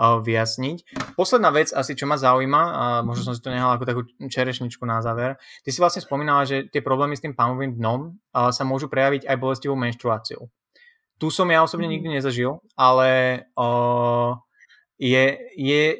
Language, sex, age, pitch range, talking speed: Slovak, male, 20-39, 125-140 Hz, 165 wpm